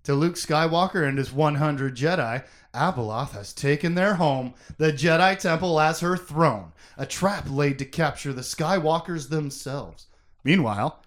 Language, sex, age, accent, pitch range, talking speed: English, male, 30-49, American, 150-215 Hz, 145 wpm